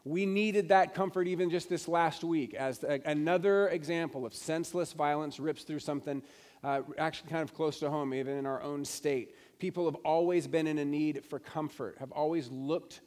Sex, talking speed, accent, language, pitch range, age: male, 195 wpm, American, English, 140-175 Hz, 40-59